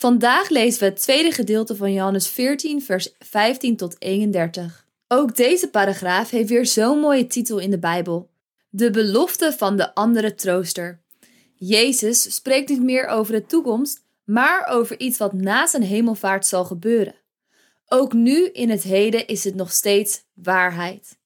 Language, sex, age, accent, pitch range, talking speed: Dutch, female, 20-39, Dutch, 195-255 Hz, 160 wpm